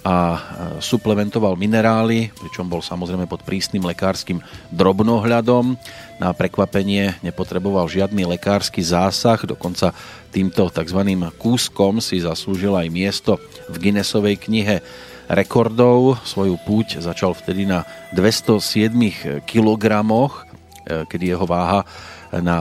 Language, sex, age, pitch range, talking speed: Slovak, male, 40-59, 90-105 Hz, 105 wpm